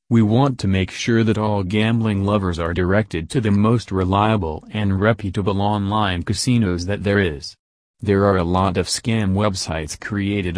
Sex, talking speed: male, 170 wpm